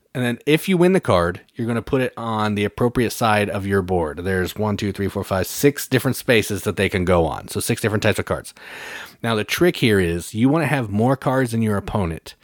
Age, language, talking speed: 30-49, English, 255 wpm